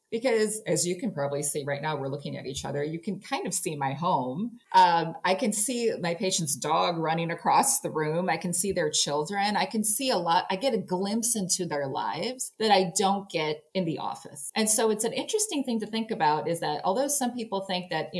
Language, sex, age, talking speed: English, female, 30-49, 235 wpm